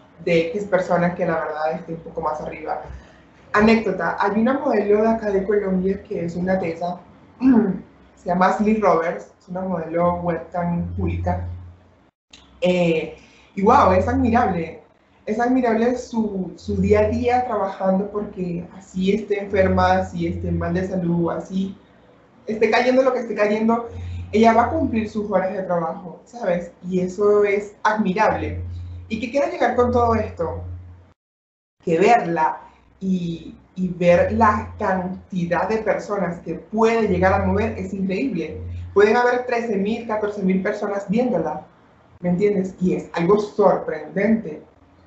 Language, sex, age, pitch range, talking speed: Spanish, male, 20-39, 170-215 Hz, 145 wpm